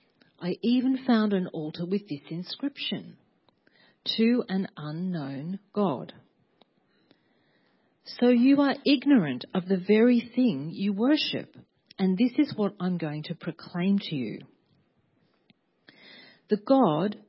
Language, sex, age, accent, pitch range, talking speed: English, female, 40-59, Australian, 165-230 Hz, 120 wpm